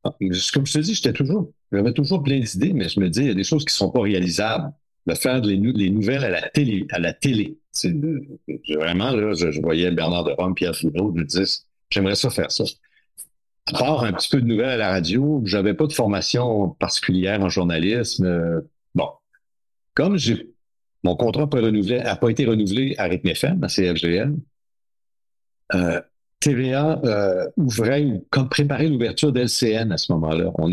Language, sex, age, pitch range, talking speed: French, male, 60-79, 95-140 Hz, 195 wpm